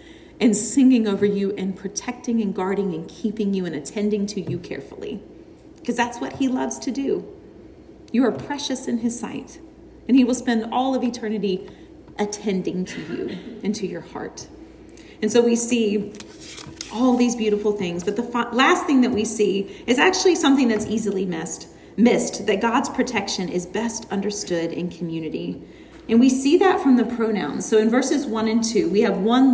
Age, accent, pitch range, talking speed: 40-59, American, 205-255 Hz, 180 wpm